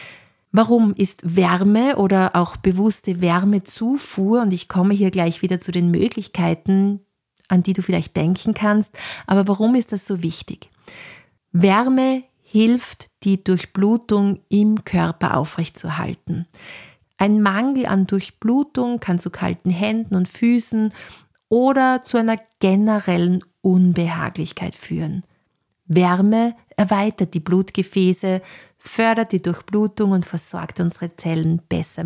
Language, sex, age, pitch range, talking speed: German, female, 40-59, 175-215 Hz, 120 wpm